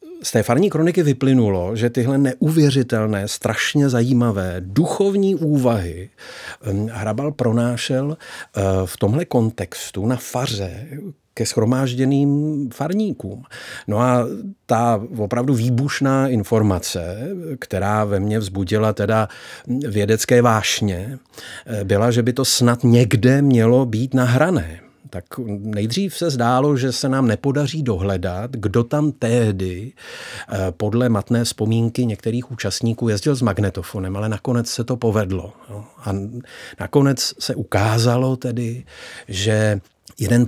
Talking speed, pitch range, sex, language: 115 wpm, 100-130 Hz, male, Czech